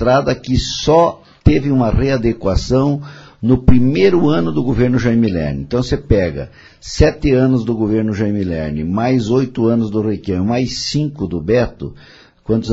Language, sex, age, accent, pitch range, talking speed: Portuguese, male, 50-69, Brazilian, 100-130 Hz, 150 wpm